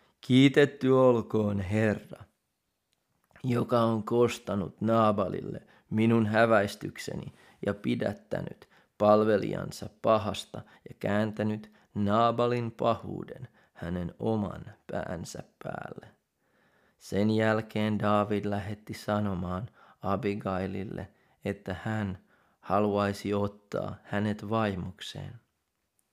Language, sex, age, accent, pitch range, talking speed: Finnish, male, 30-49, native, 100-115 Hz, 75 wpm